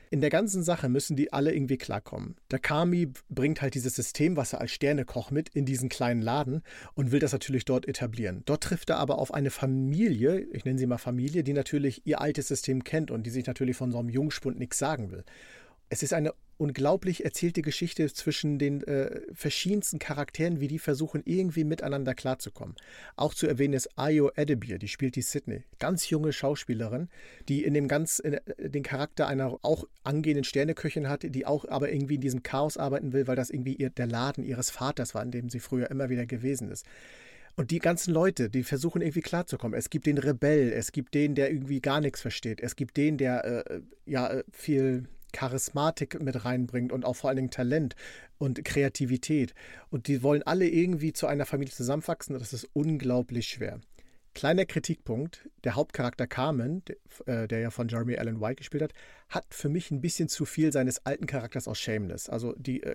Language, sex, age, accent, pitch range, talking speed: German, male, 50-69, German, 130-150 Hz, 195 wpm